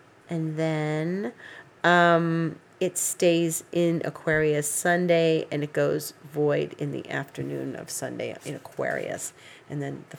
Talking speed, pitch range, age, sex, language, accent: 130 wpm, 140-165 Hz, 40-59, female, English, American